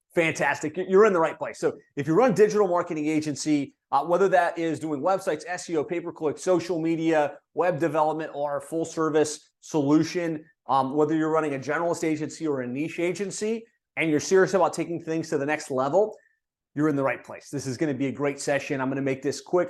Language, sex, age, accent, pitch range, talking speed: English, male, 30-49, American, 140-180 Hz, 210 wpm